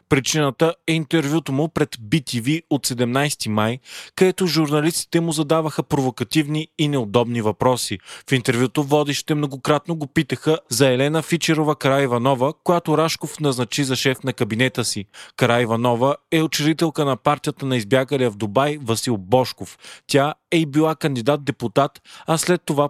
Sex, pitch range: male, 125-155 Hz